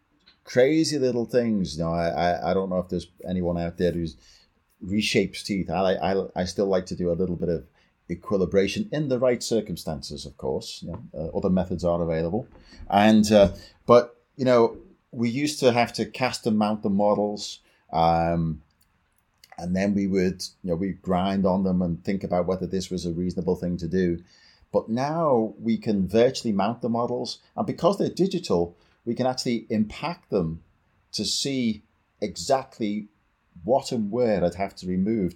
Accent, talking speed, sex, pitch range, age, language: British, 180 wpm, male, 85-110 Hz, 30-49, English